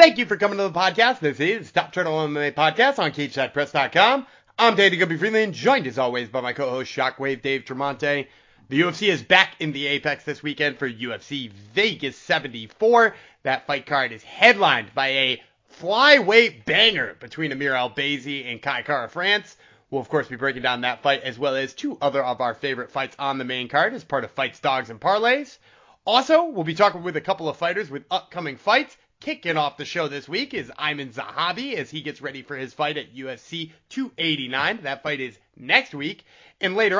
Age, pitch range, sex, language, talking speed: 30-49, 135-195 Hz, male, English, 200 wpm